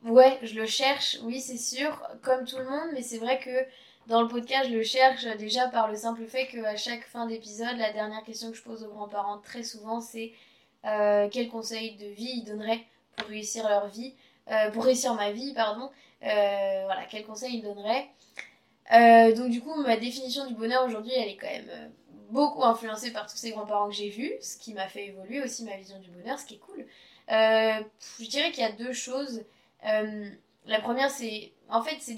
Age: 20-39